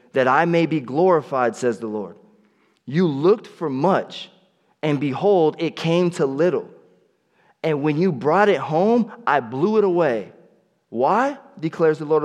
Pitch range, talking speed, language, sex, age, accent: 125-175 Hz, 155 wpm, English, male, 20-39, American